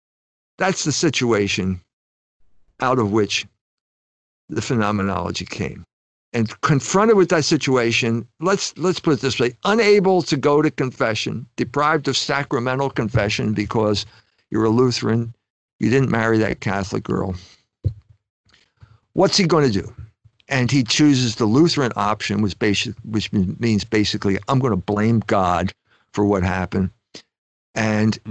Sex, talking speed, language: male, 135 wpm, English